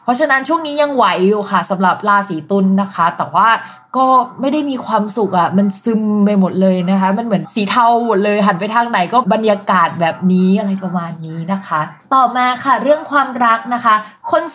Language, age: Thai, 20-39